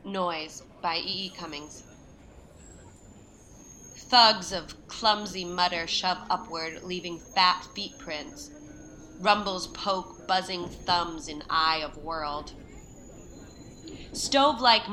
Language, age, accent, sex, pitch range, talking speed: English, 30-49, American, female, 175-220 Hz, 95 wpm